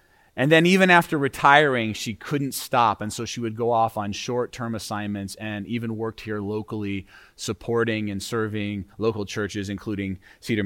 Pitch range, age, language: 100-115 Hz, 30-49, English